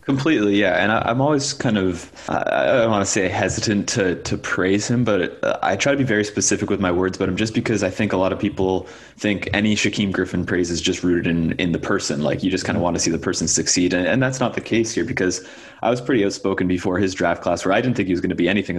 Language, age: English, 20-39